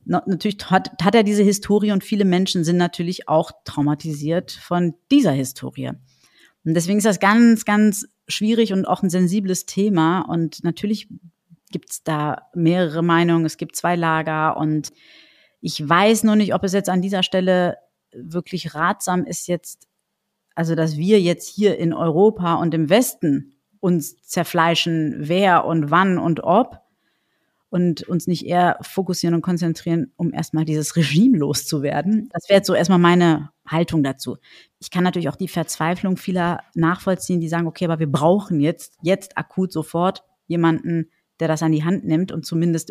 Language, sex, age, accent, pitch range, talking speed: German, female, 30-49, German, 160-185 Hz, 165 wpm